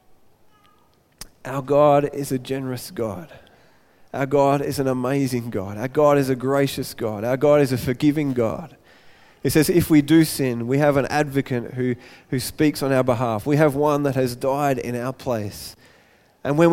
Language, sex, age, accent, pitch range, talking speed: English, male, 20-39, Australian, 130-160 Hz, 185 wpm